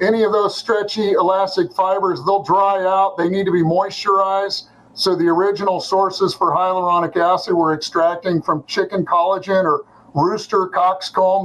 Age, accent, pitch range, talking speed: 50-69, American, 175-205 Hz, 150 wpm